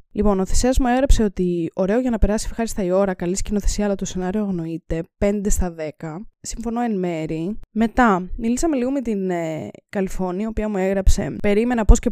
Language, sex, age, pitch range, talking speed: Greek, female, 20-39, 195-255 Hz, 190 wpm